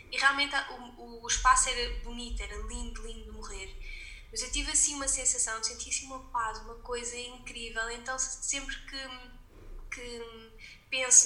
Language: Portuguese